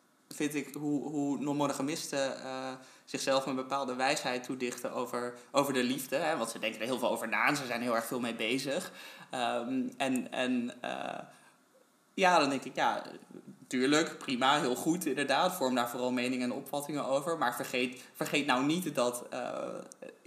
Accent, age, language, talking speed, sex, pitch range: Dutch, 20-39, Dutch, 180 wpm, male, 125-155 Hz